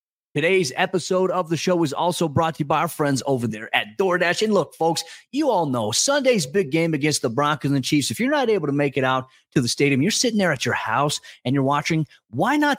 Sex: male